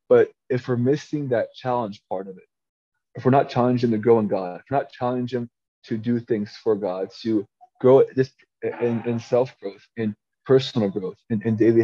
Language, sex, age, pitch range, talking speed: English, male, 20-39, 110-130 Hz, 190 wpm